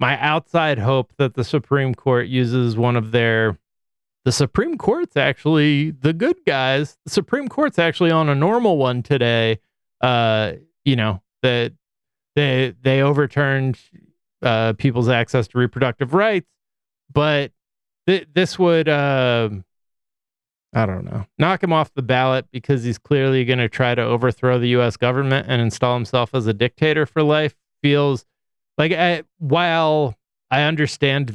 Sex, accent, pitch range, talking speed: male, American, 115-150 Hz, 150 wpm